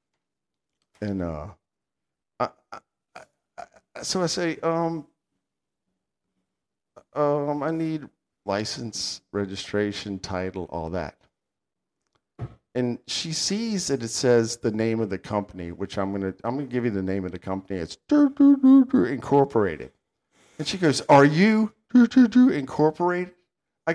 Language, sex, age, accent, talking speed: English, male, 50-69, American, 125 wpm